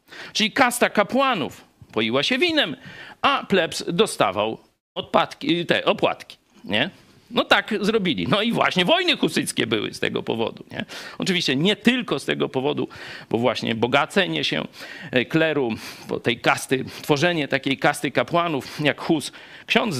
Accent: native